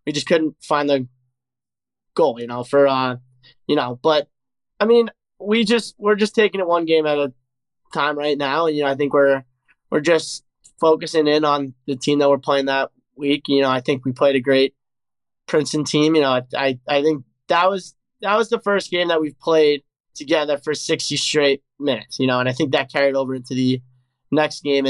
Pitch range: 130-160 Hz